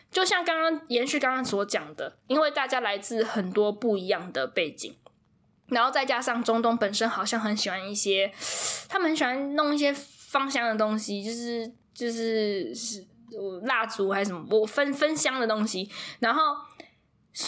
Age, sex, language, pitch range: 10-29, female, Chinese, 205-260 Hz